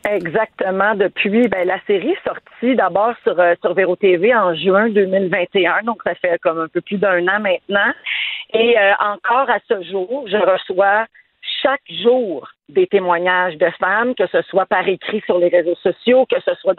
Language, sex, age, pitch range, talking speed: French, female, 50-69, 200-265 Hz, 185 wpm